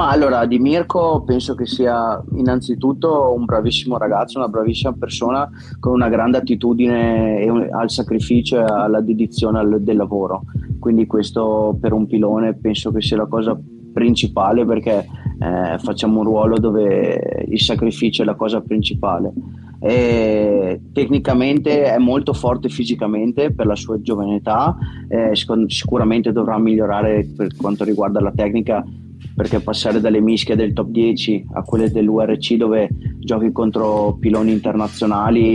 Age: 20-39